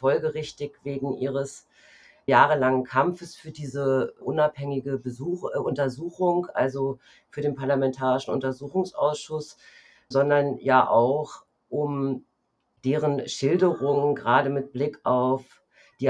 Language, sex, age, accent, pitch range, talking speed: German, female, 50-69, German, 130-145 Hz, 95 wpm